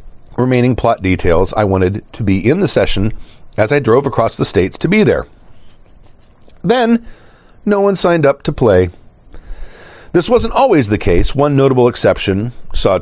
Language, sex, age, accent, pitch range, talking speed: English, male, 40-59, American, 105-150 Hz, 160 wpm